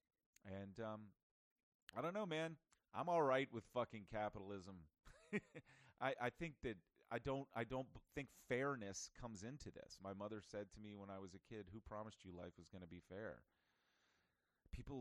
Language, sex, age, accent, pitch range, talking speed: English, male, 30-49, American, 85-110 Hz, 185 wpm